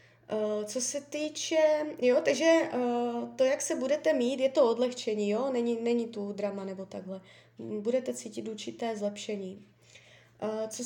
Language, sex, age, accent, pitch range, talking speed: Czech, female, 20-39, native, 205-255 Hz, 140 wpm